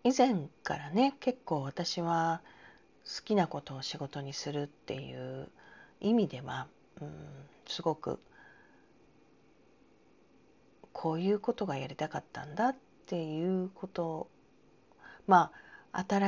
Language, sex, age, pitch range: Japanese, female, 40-59, 150-205 Hz